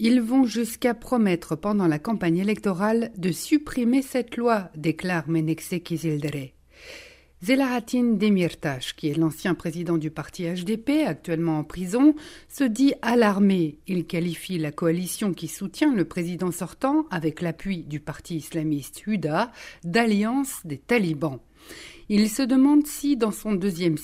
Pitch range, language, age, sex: 165-240 Hz, French, 60-79, female